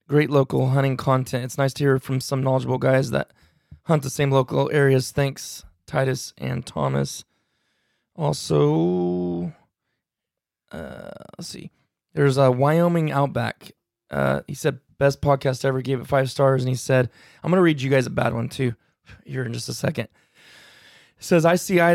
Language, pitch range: English, 130-150 Hz